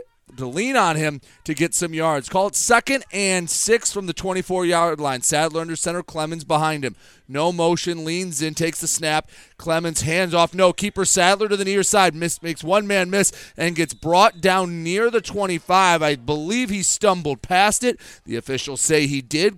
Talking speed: 195 wpm